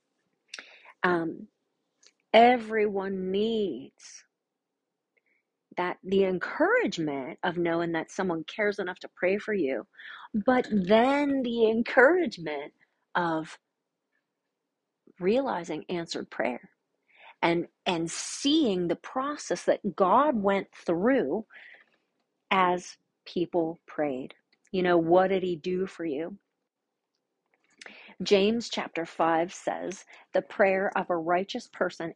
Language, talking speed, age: English, 100 wpm, 40-59